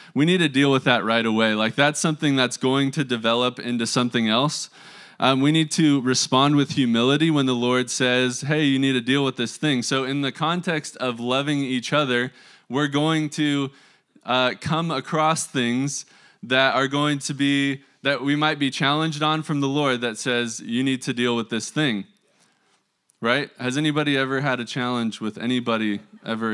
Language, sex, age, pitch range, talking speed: English, male, 20-39, 125-150 Hz, 190 wpm